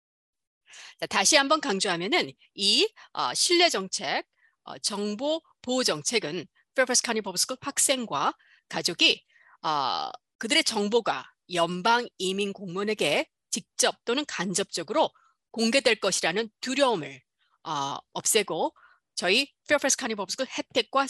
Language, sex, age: Korean, female, 40-59